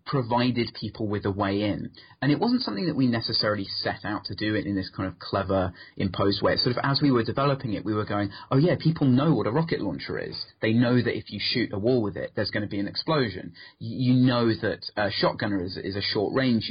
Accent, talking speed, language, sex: British, 250 wpm, English, male